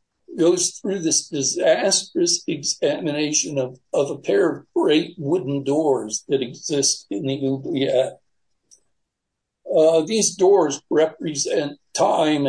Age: 60-79